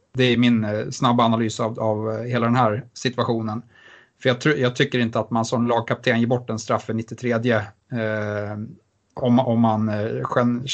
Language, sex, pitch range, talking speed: Swedish, male, 110-125 Hz, 175 wpm